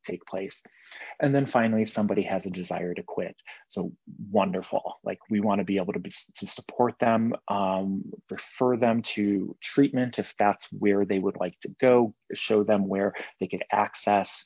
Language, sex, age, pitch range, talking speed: English, male, 30-49, 100-130 Hz, 175 wpm